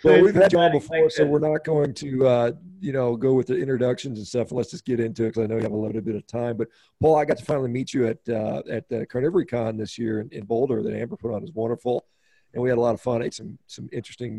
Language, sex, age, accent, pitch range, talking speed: English, male, 40-59, American, 115-140 Hz, 290 wpm